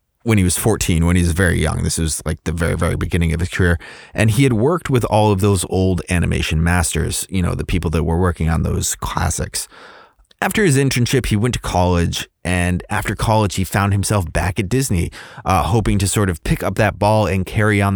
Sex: male